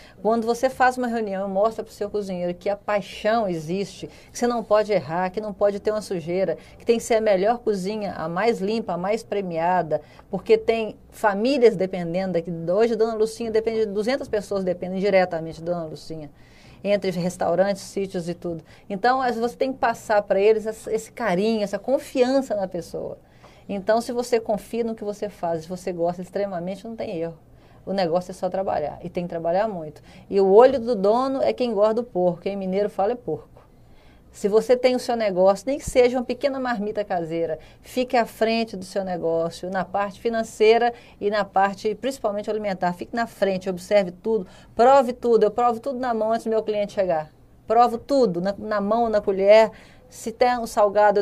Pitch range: 185-225 Hz